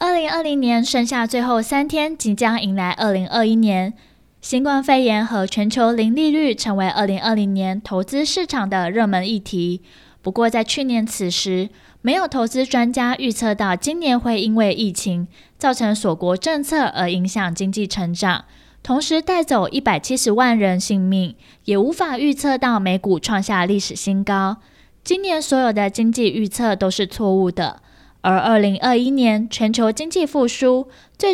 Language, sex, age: Chinese, female, 20-39